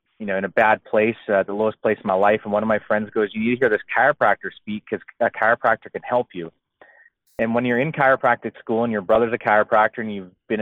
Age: 30-49